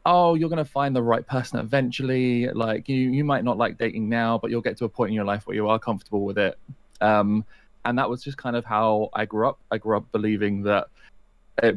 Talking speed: 250 wpm